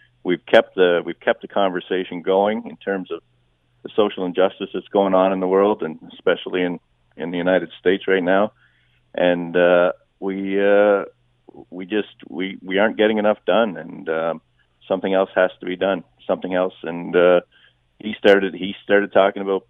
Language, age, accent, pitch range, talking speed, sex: English, 40-59, American, 85-105 Hz, 180 wpm, male